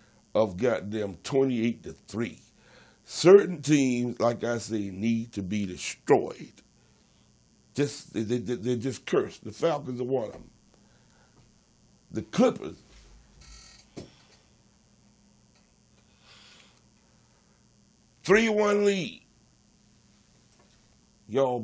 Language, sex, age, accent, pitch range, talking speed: English, male, 60-79, American, 110-150 Hz, 85 wpm